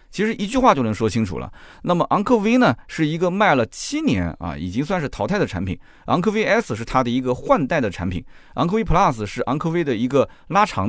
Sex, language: male, Chinese